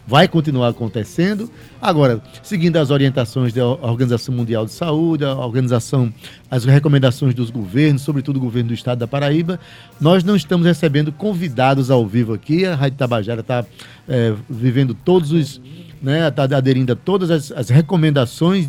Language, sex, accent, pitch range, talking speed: Portuguese, male, Brazilian, 125-165 Hz, 155 wpm